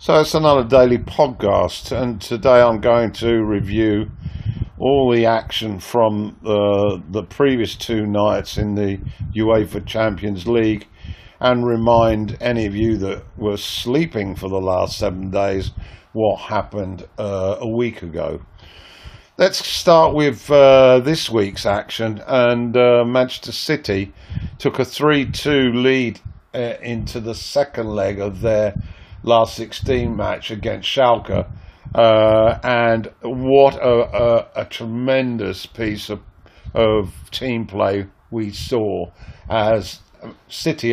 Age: 50-69